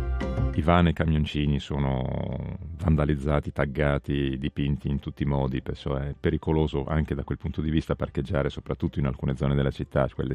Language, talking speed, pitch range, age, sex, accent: Italian, 160 wpm, 70-80 Hz, 40-59, male, native